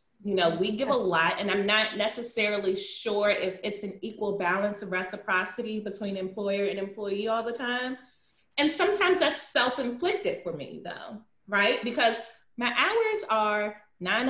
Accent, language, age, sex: American, English, 30-49, female